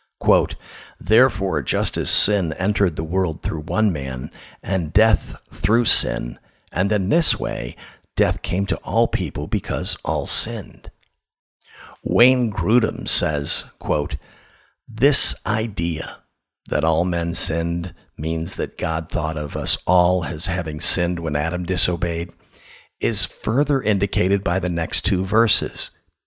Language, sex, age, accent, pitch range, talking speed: English, male, 50-69, American, 80-105 Hz, 135 wpm